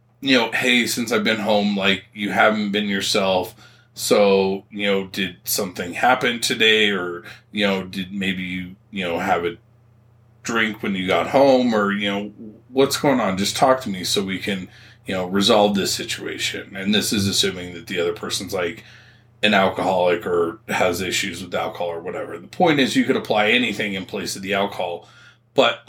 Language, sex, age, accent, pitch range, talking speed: English, male, 30-49, American, 100-130 Hz, 190 wpm